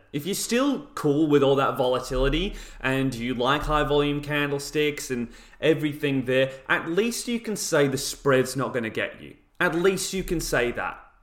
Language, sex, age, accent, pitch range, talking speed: English, male, 30-49, British, 120-175 Hz, 185 wpm